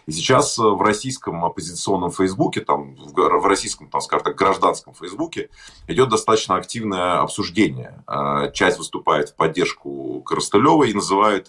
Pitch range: 85-115 Hz